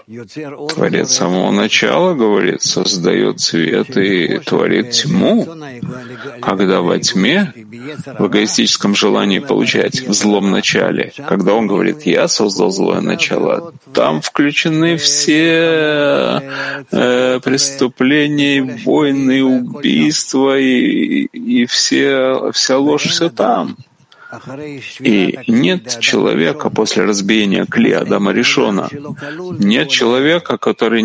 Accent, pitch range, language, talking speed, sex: native, 120-150 Hz, Russian, 95 wpm, male